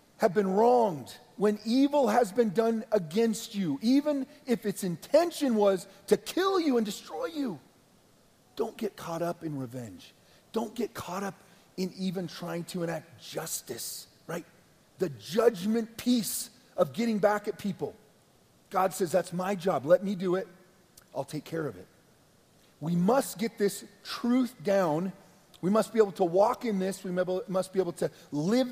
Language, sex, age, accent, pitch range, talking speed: English, male, 40-59, American, 155-220 Hz, 165 wpm